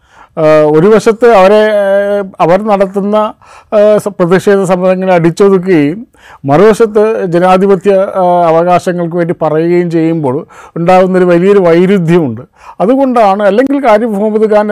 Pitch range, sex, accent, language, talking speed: 170-205 Hz, male, native, Malayalam, 90 wpm